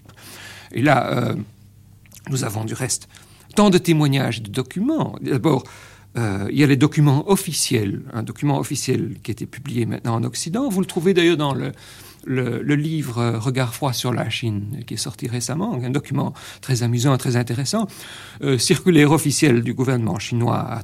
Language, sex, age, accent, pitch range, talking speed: French, male, 50-69, French, 115-150 Hz, 175 wpm